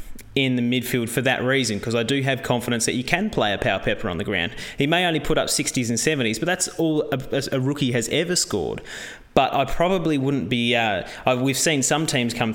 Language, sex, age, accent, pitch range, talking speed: English, male, 20-39, Australian, 120-150 Hz, 235 wpm